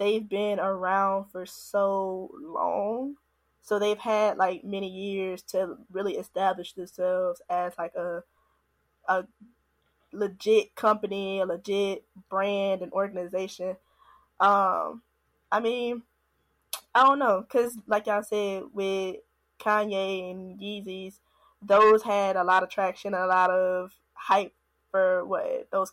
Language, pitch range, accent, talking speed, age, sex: English, 185-210 Hz, American, 125 wpm, 10-29, female